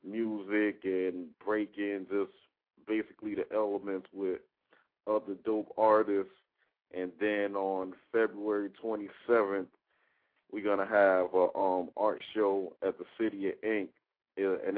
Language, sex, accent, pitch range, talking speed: English, male, American, 95-105 Hz, 120 wpm